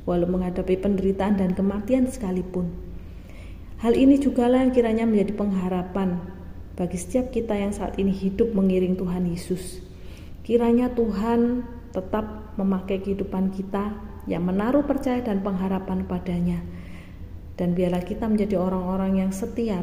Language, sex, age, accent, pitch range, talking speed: Indonesian, female, 30-49, native, 175-220 Hz, 130 wpm